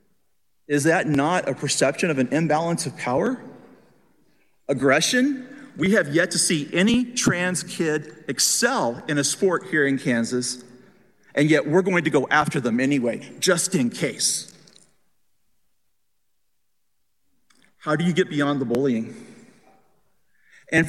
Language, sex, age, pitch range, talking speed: English, male, 40-59, 150-220 Hz, 130 wpm